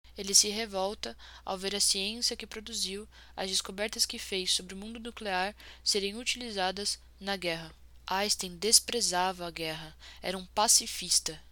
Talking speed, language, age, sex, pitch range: 145 wpm, Portuguese, 10-29, female, 185-215 Hz